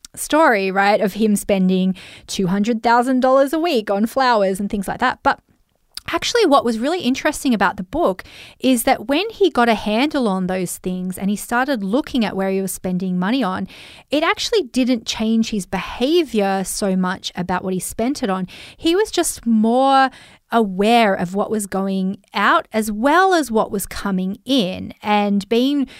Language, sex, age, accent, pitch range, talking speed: English, female, 30-49, Australian, 195-260 Hz, 180 wpm